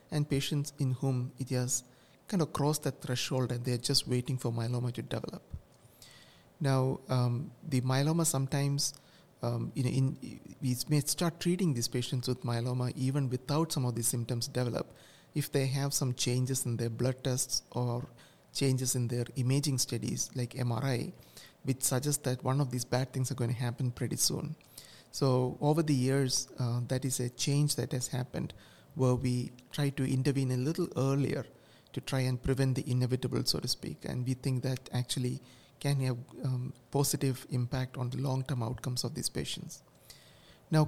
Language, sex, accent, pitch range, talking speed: English, male, Indian, 125-140 Hz, 175 wpm